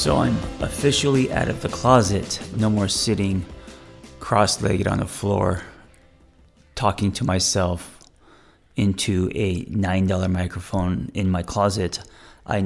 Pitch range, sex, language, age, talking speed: 90-115 Hz, male, English, 30-49, 125 wpm